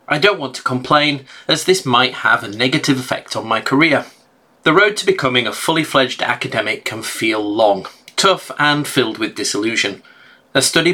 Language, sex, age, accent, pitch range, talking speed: English, male, 30-49, British, 125-175 Hz, 175 wpm